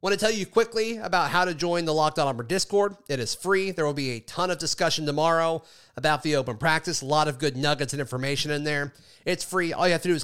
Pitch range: 140-175 Hz